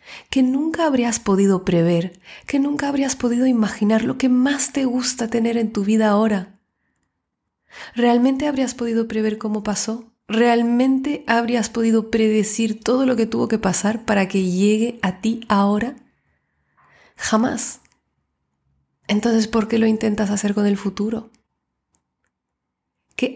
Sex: female